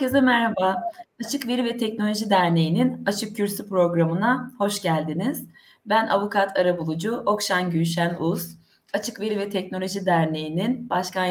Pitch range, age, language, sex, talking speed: 165-215 Hz, 30-49, Turkish, female, 135 wpm